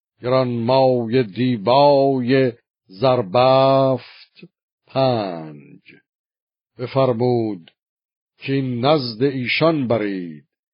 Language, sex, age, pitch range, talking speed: Persian, male, 50-69, 120-135 Hz, 55 wpm